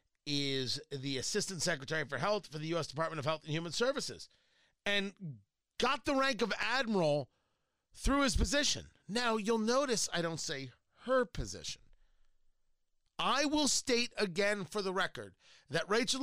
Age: 40-59